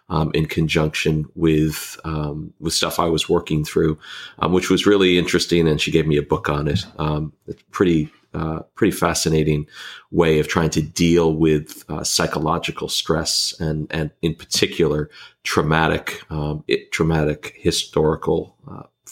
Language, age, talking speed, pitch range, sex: English, 40-59, 150 wpm, 80-85 Hz, male